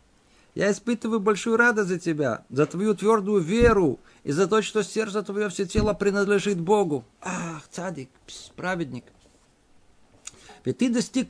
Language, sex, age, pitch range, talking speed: Russian, male, 50-69, 145-220 Hz, 140 wpm